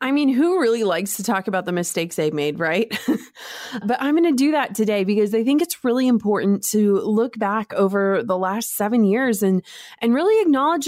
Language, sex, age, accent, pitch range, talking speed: English, female, 20-39, American, 195-255 Hz, 210 wpm